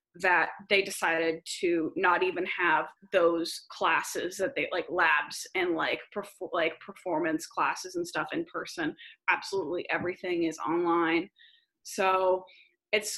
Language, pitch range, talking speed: English, 185-235 Hz, 130 wpm